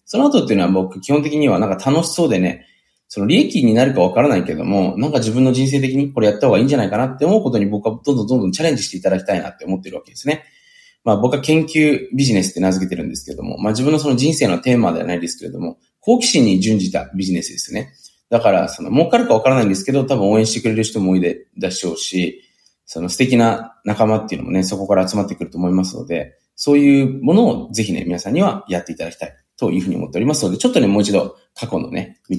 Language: Japanese